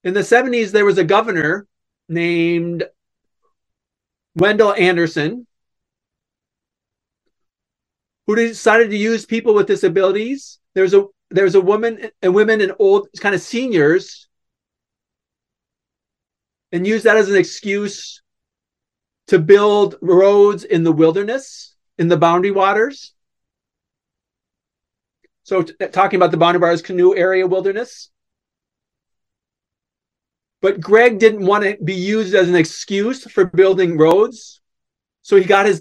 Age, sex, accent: 30-49, male, American